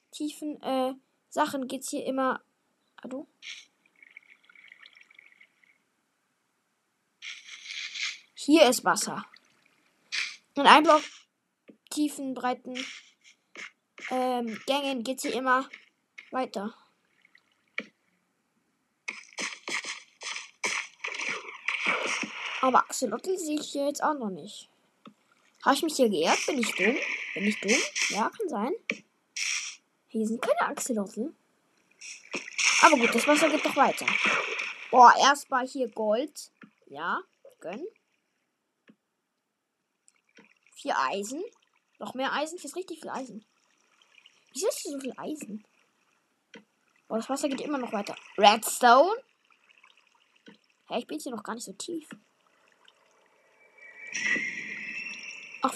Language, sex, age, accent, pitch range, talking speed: German, female, 10-29, German, 245-330 Hz, 110 wpm